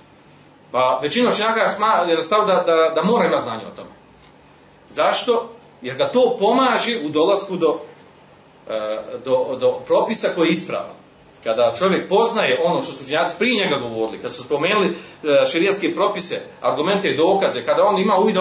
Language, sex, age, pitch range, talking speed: Croatian, male, 40-59, 165-230 Hz, 160 wpm